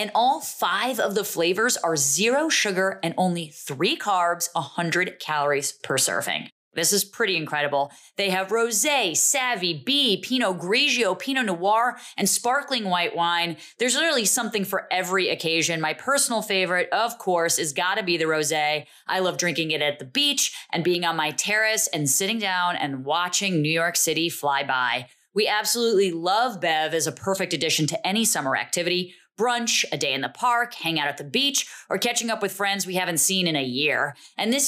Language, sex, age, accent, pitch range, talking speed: English, female, 30-49, American, 165-225 Hz, 190 wpm